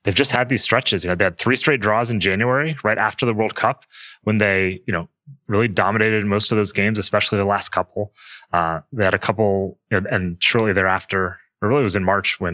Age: 20-39